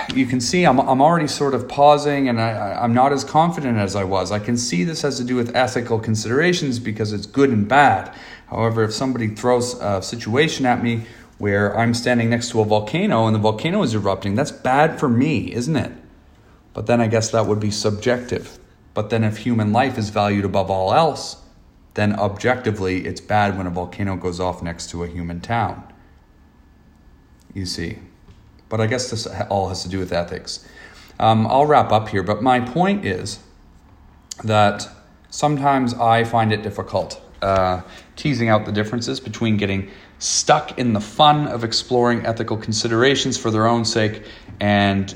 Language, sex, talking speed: English, male, 180 wpm